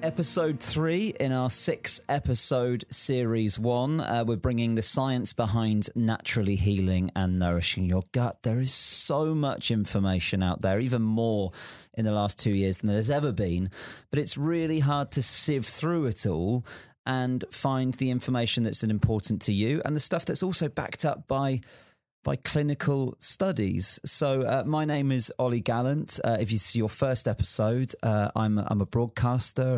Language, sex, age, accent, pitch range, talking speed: English, male, 30-49, British, 105-130 Hz, 170 wpm